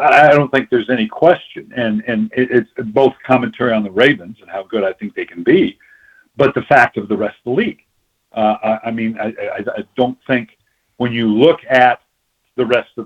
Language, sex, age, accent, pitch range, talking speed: English, male, 50-69, American, 105-135 Hz, 215 wpm